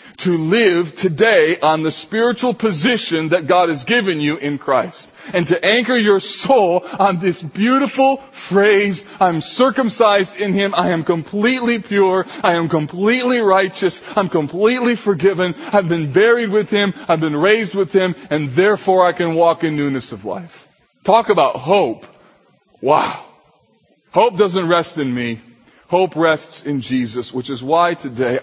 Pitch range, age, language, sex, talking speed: 130-185 Hz, 40-59, English, male, 155 wpm